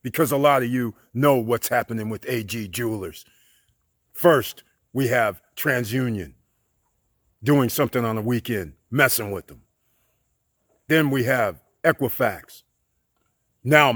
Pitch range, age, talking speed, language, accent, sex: 105-135 Hz, 50-69, 120 wpm, English, American, male